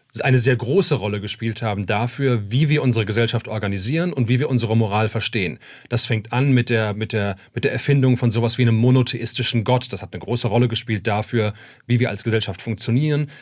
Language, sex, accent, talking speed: German, male, German, 205 wpm